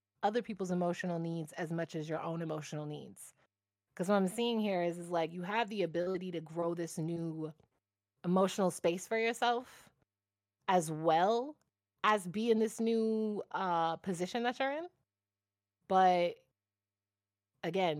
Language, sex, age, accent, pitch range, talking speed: English, female, 20-39, American, 150-190 Hz, 150 wpm